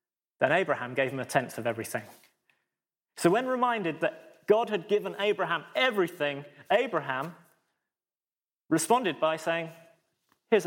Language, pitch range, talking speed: English, 155-200 Hz, 125 wpm